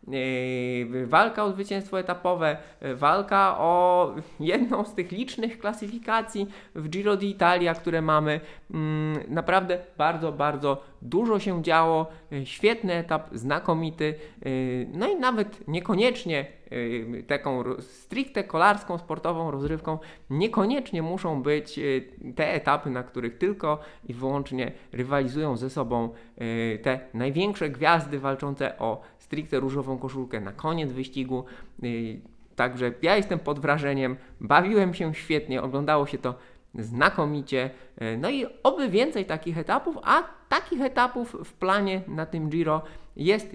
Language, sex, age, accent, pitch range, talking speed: Polish, male, 20-39, native, 130-180 Hz, 115 wpm